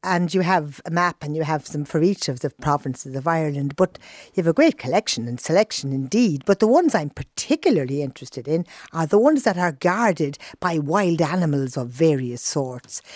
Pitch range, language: 150-195 Hz, English